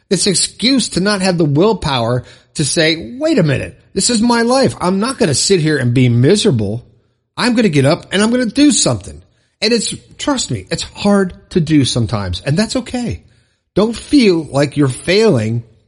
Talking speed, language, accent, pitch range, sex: 200 wpm, English, American, 125-185 Hz, male